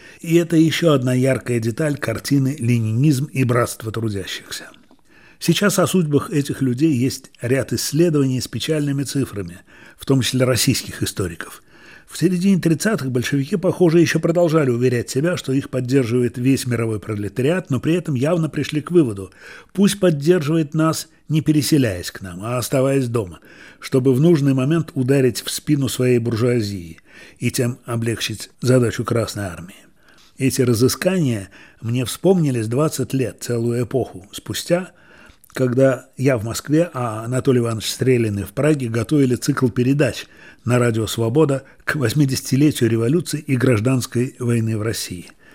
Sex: male